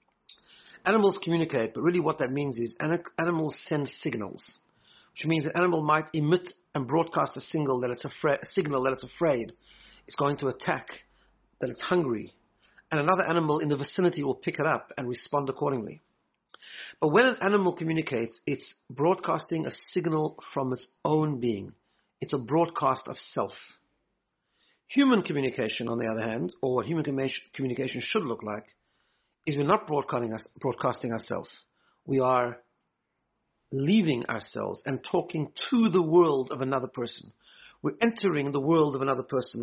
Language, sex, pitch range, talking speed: English, male, 130-170 Hz, 155 wpm